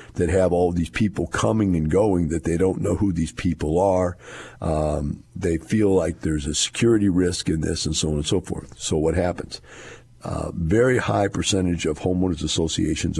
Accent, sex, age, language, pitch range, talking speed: American, male, 50-69, English, 80-105 Hz, 190 wpm